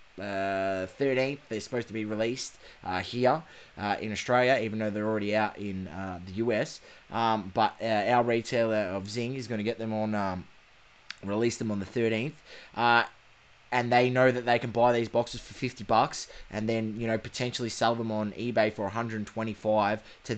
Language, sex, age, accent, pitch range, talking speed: English, male, 20-39, Australian, 105-125 Hz, 190 wpm